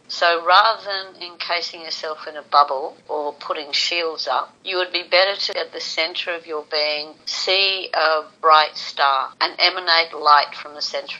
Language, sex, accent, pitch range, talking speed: English, female, Australian, 155-185 Hz, 175 wpm